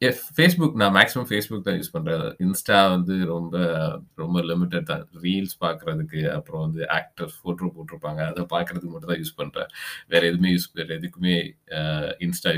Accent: native